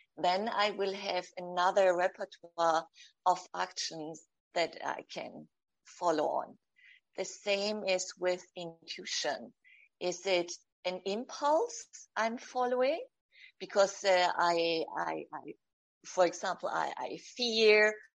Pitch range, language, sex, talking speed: 175-210 Hz, English, female, 110 wpm